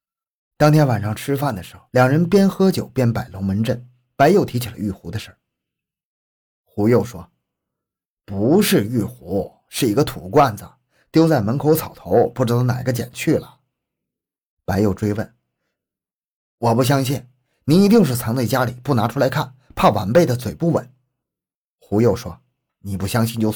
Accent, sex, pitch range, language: native, male, 105-140 Hz, Chinese